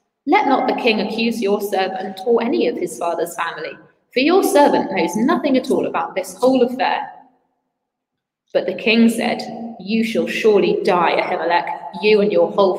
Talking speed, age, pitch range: 175 wpm, 20-39, 190-250 Hz